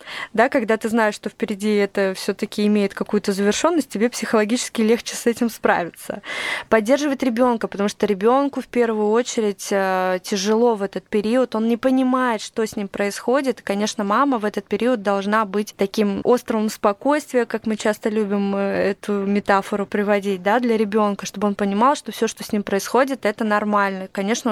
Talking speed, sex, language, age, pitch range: 165 wpm, female, Russian, 20-39, 200-235 Hz